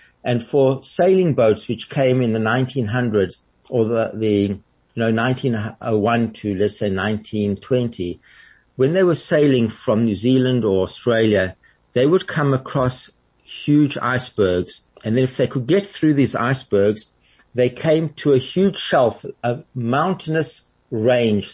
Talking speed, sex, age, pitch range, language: 145 wpm, male, 50-69, 110-135 Hz, English